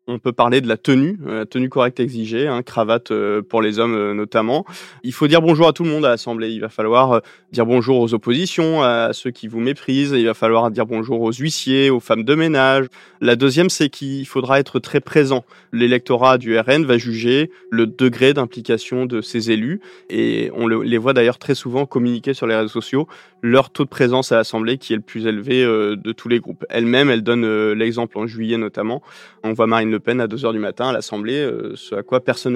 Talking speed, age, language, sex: 215 wpm, 20-39, French, male